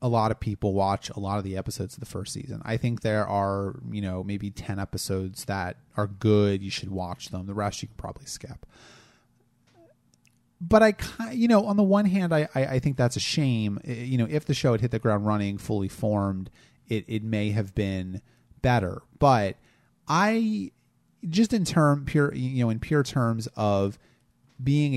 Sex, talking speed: male, 195 wpm